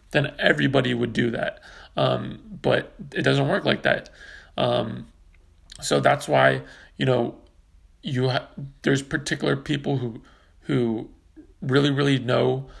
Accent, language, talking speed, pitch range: American, English, 130 wpm, 115-140 Hz